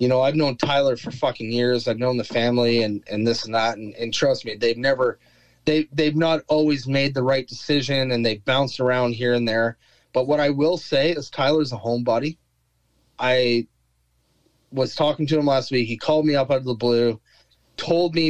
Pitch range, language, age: 120-150 Hz, English, 30-49